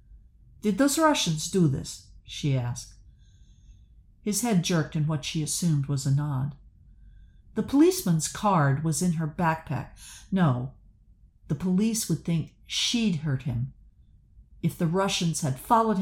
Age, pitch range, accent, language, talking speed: 50-69, 115-175 Hz, American, English, 140 wpm